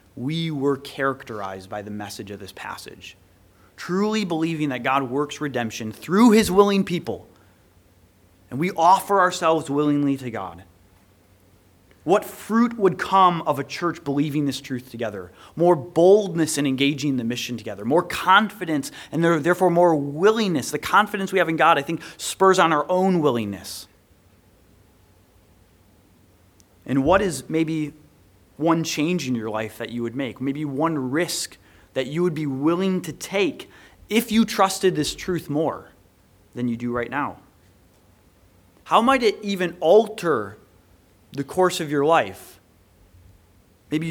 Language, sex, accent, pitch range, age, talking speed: English, male, American, 100-165 Hz, 30-49, 145 wpm